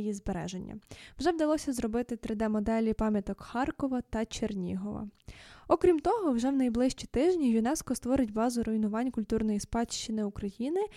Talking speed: 125 wpm